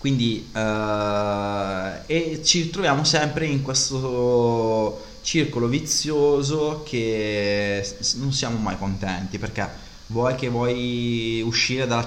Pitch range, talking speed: 100-120 Hz, 115 wpm